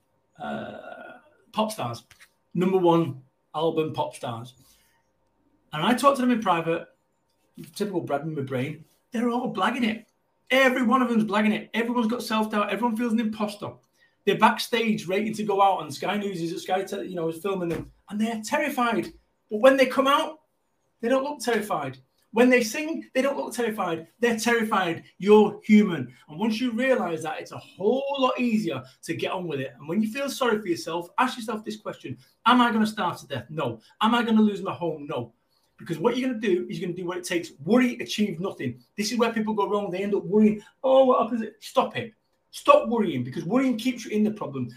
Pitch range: 170-240 Hz